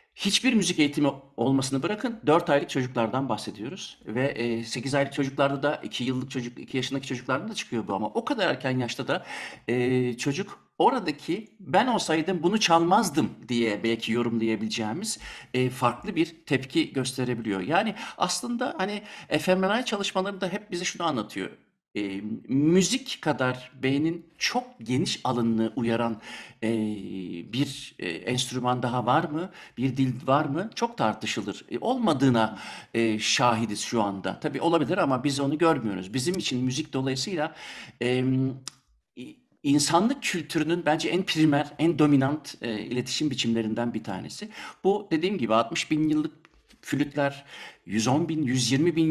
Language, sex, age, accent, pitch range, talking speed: Turkish, male, 60-79, native, 120-165 Hz, 140 wpm